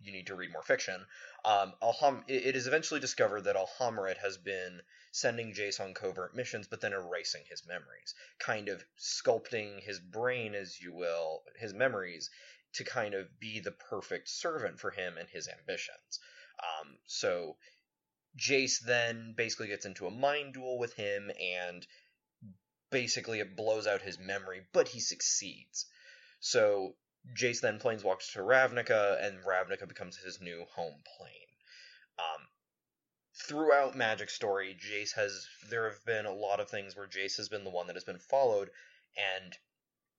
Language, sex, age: English, male, 20-39